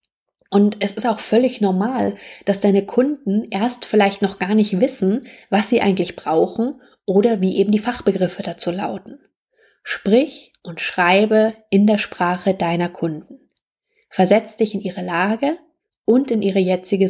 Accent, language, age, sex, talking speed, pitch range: German, German, 20-39, female, 150 wpm, 185-225 Hz